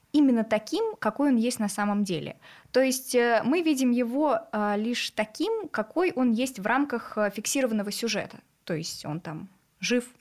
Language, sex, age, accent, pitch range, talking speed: Russian, female, 20-39, native, 200-250 Hz, 160 wpm